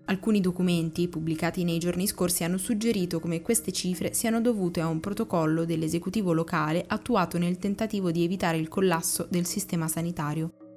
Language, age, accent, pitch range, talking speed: Italian, 20-39, native, 170-205 Hz, 155 wpm